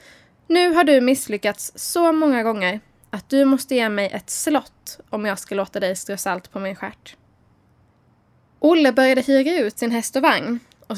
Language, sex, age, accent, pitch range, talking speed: Swedish, female, 10-29, native, 200-260 Hz, 180 wpm